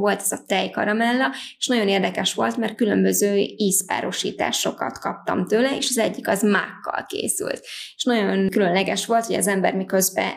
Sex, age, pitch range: female, 20-39, 190-220 Hz